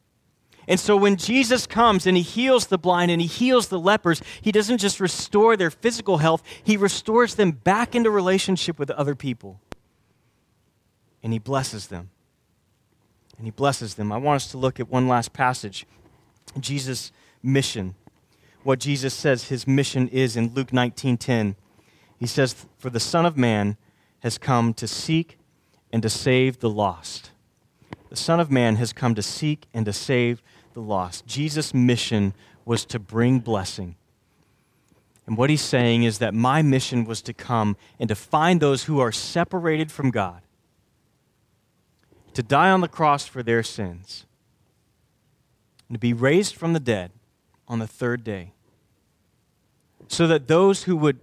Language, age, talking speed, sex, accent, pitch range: English, 30-49, 165 wpm, male, American, 115-155 Hz